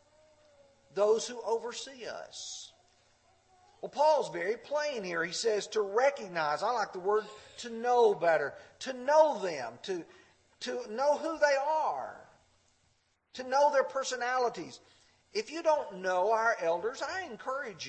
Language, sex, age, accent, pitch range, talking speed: English, male, 50-69, American, 190-300 Hz, 140 wpm